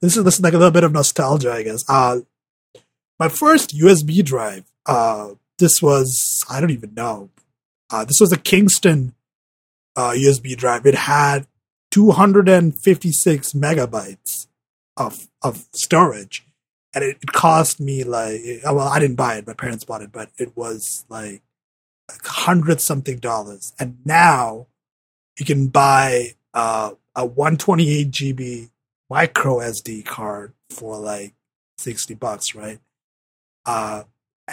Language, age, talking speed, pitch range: English, 30-49, 140 wpm, 115-155 Hz